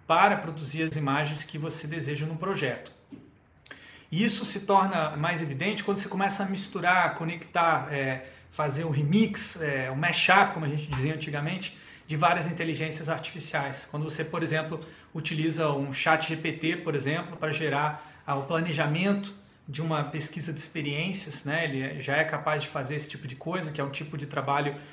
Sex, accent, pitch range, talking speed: male, Brazilian, 145-175 Hz, 180 wpm